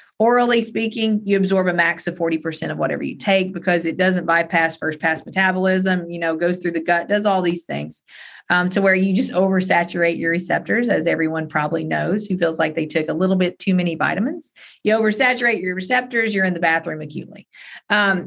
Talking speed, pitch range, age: 205 wpm, 170-210 Hz, 40-59